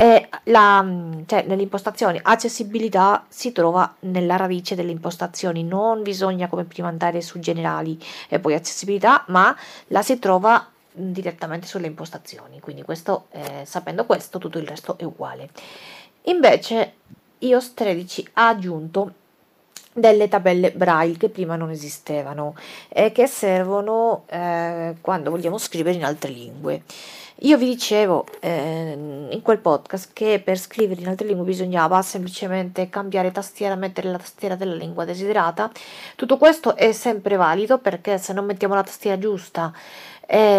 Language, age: Italian, 40-59